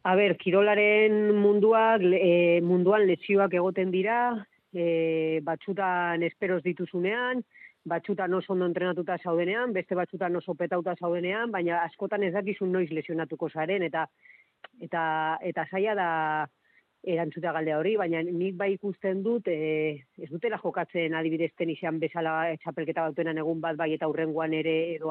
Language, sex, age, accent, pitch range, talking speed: Polish, female, 30-49, Spanish, 165-200 Hz, 140 wpm